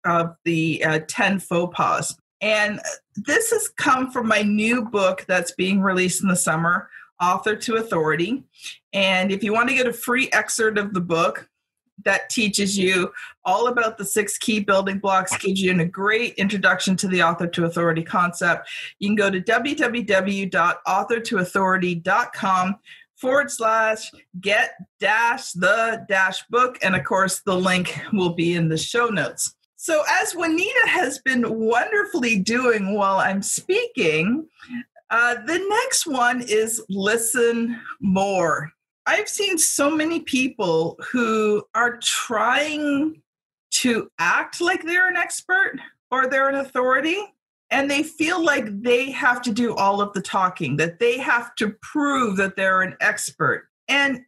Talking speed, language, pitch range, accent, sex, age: 150 wpm, English, 190-265 Hz, American, female, 40-59